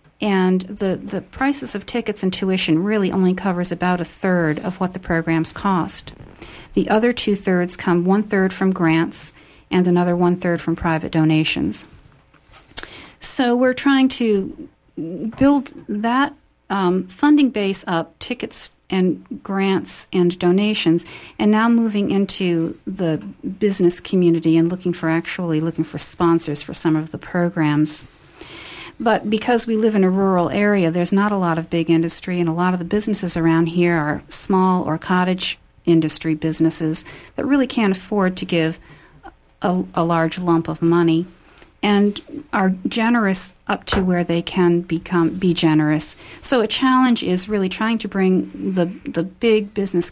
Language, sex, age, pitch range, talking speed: English, female, 50-69, 165-205 Hz, 155 wpm